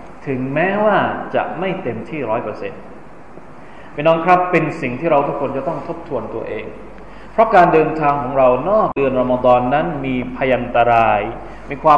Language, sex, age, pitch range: Thai, male, 20-39, 130-190 Hz